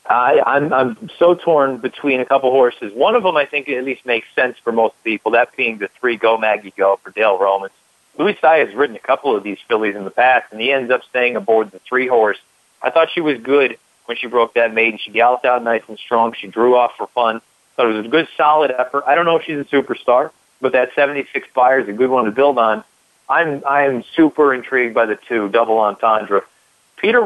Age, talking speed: 40-59, 230 wpm